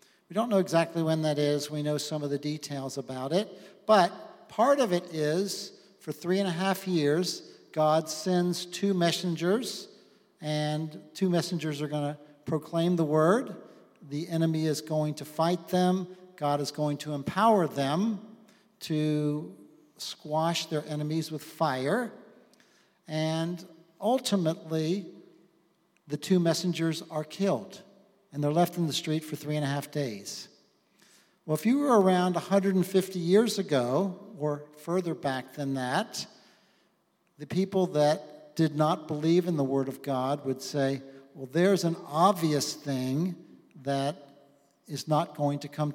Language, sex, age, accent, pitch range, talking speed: English, male, 50-69, American, 145-185 Hz, 150 wpm